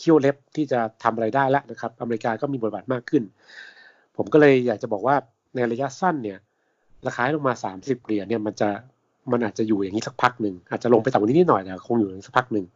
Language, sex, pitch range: Thai, male, 105-130 Hz